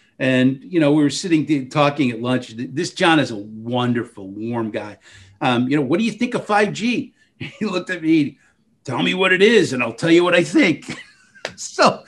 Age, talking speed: 50-69, 215 wpm